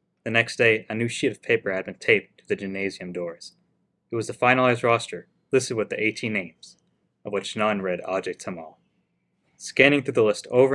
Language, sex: English, male